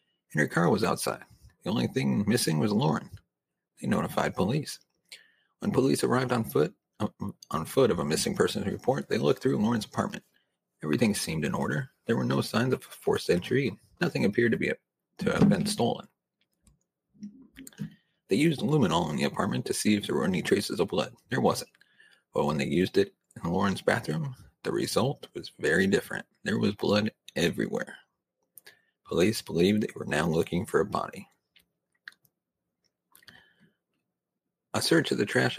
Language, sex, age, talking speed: English, male, 40-59, 165 wpm